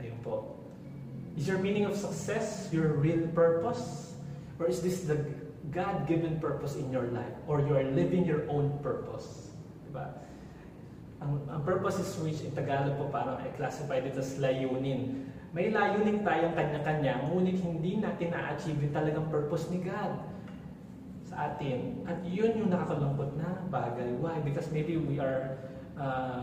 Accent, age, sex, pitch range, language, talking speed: native, 20-39, male, 140-170 Hz, Filipino, 150 wpm